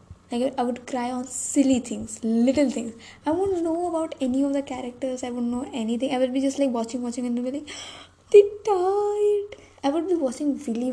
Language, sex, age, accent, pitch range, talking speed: English, female, 20-39, Indian, 230-285 Hz, 210 wpm